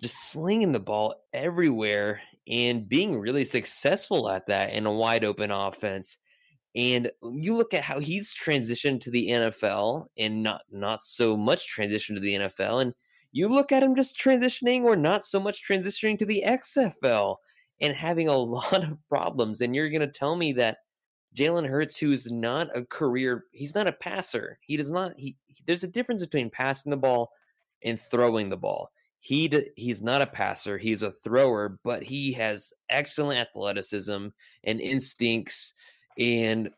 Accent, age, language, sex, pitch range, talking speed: American, 20-39, English, male, 105-145 Hz, 175 wpm